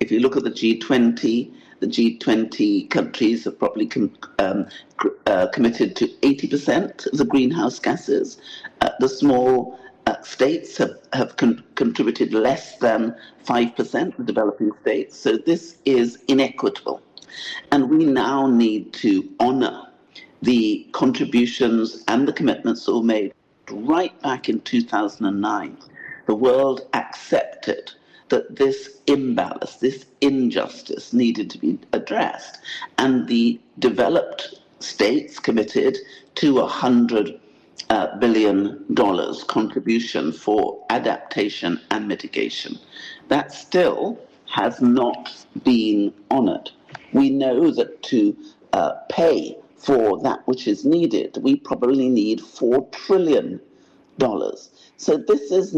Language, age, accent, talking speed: English, 60-79, British, 120 wpm